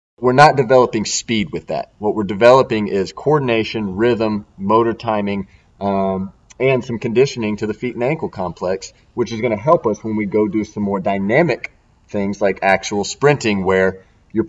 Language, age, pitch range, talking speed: English, 30-49, 105-125 Hz, 175 wpm